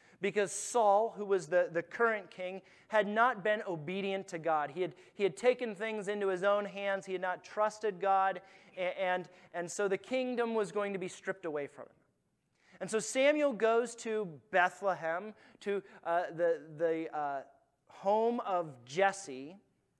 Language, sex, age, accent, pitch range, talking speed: English, male, 30-49, American, 165-215 Hz, 165 wpm